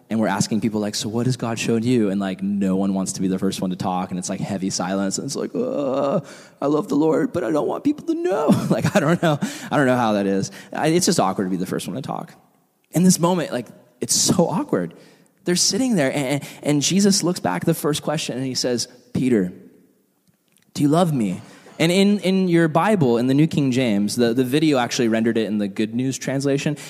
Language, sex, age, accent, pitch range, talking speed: English, male, 20-39, American, 120-170 Hz, 250 wpm